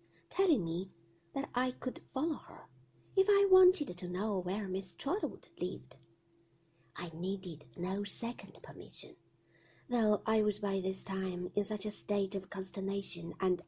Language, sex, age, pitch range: Chinese, female, 50-69, 185-285 Hz